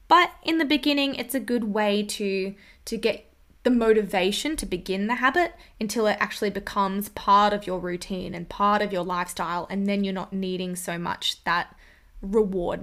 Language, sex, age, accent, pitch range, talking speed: English, female, 20-39, Australian, 190-250 Hz, 180 wpm